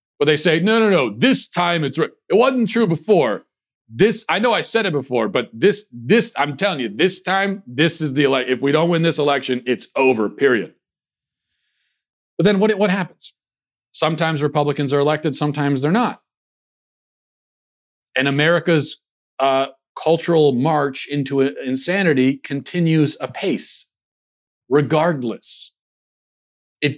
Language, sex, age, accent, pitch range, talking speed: English, male, 40-59, American, 125-175 Hz, 140 wpm